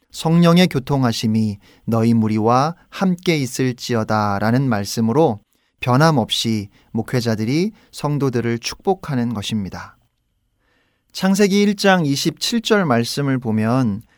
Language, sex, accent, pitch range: Korean, male, native, 115-165 Hz